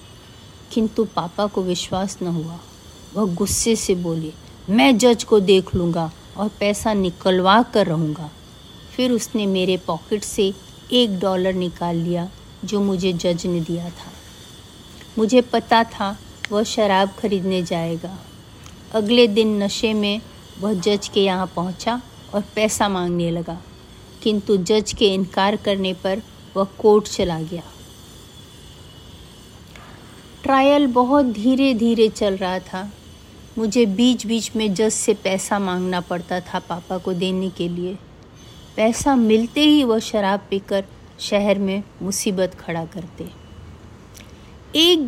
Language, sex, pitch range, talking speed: Hindi, female, 180-230 Hz, 130 wpm